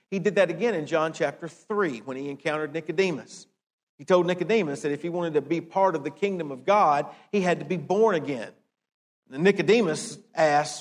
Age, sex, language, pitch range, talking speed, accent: 50-69, male, English, 155-200 Hz, 200 wpm, American